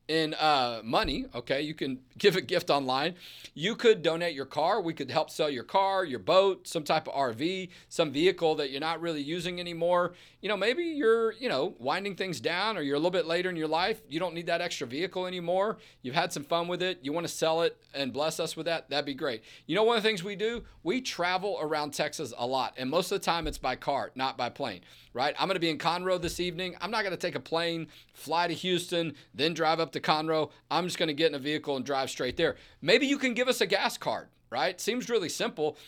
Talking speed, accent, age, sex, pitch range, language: 255 wpm, American, 40-59, male, 150-185 Hz, English